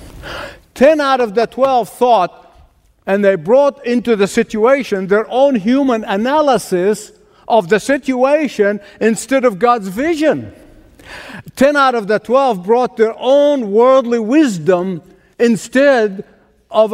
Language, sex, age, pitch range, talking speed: English, male, 60-79, 185-255 Hz, 125 wpm